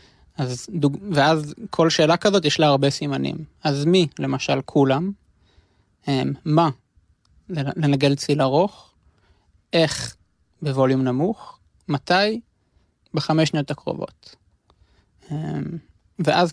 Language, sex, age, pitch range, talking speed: Hebrew, male, 20-39, 125-150 Hz, 100 wpm